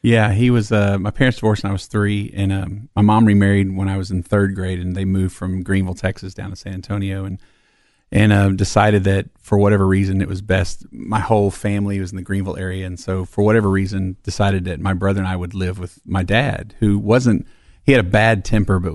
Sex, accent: male, American